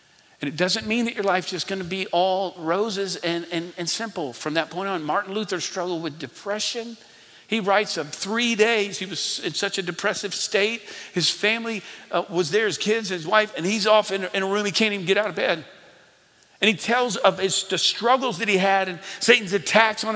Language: English